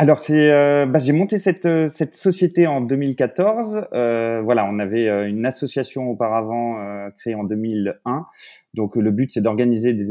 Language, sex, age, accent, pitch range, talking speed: French, male, 30-49, French, 100-130 Hz, 165 wpm